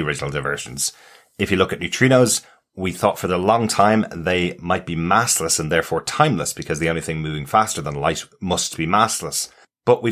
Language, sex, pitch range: English, male, 85-110 Hz